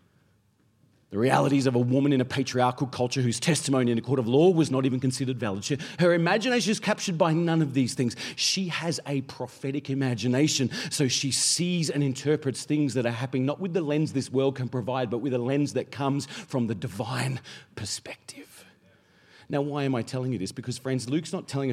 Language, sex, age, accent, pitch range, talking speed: English, male, 40-59, Australian, 135-215 Hz, 205 wpm